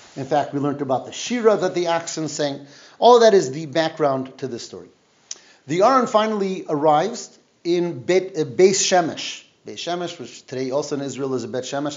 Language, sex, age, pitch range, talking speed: English, male, 30-49, 140-190 Hz, 195 wpm